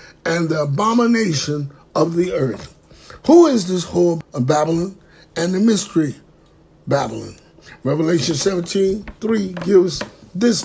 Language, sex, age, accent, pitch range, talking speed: English, male, 60-79, American, 170-215 Hz, 120 wpm